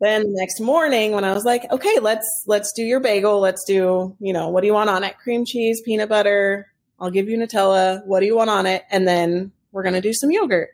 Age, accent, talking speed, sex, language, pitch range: 20-39, American, 250 wpm, female, English, 180-220 Hz